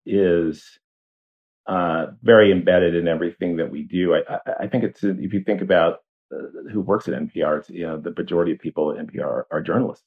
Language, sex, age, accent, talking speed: English, male, 40-59, American, 205 wpm